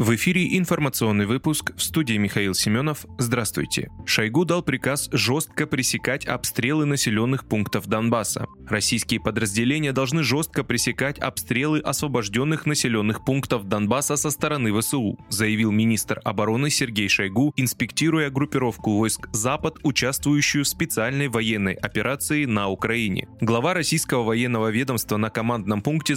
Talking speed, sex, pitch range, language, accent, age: 125 wpm, male, 110-145 Hz, Russian, native, 20-39